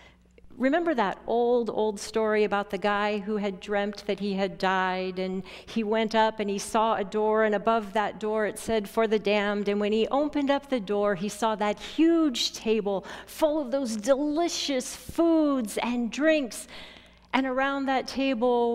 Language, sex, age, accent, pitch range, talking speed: English, female, 40-59, American, 205-245 Hz, 180 wpm